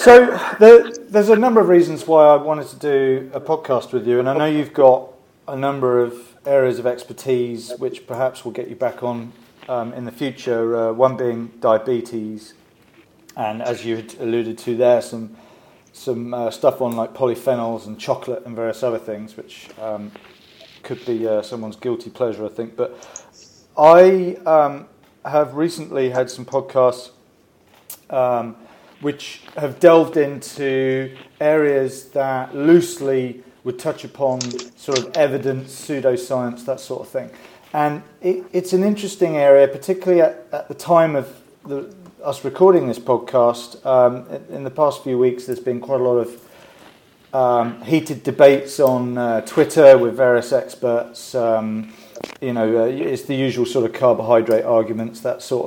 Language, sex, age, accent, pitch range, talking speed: English, male, 40-59, British, 120-150 Hz, 160 wpm